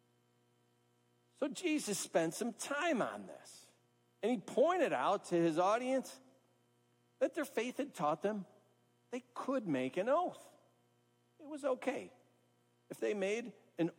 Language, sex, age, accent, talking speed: English, male, 50-69, American, 135 wpm